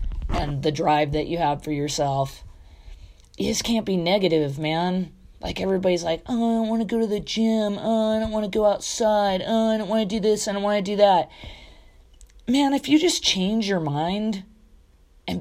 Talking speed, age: 205 wpm, 30-49